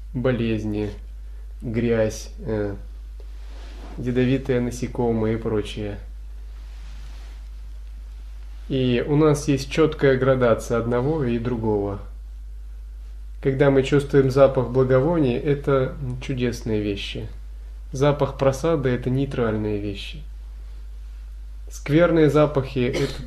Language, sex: Russian, male